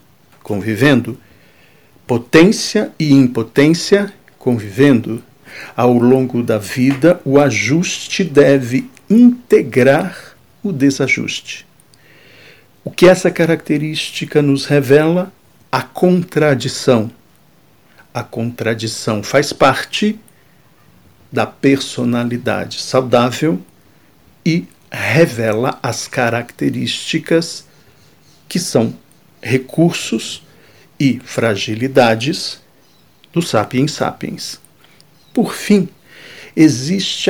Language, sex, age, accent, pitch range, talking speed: Portuguese, male, 50-69, Brazilian, 125-165 Hz, 70 wpm